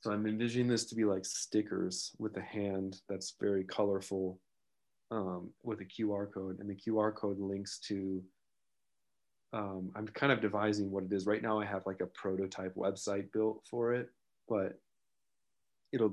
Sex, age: male, 30-49